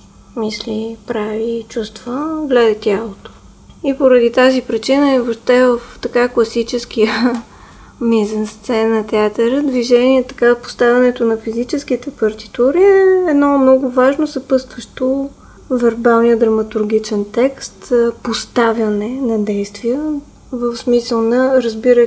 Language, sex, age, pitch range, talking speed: Bulgarian, female, 20-39, 220-265 Hz, 105 wpm